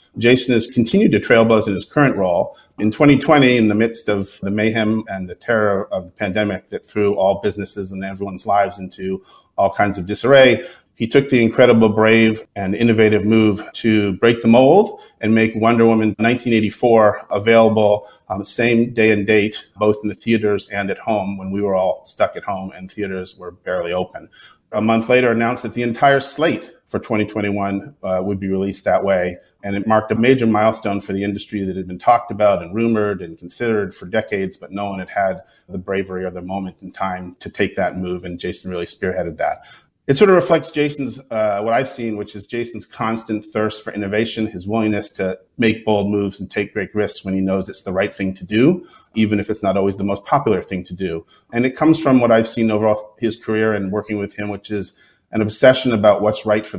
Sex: male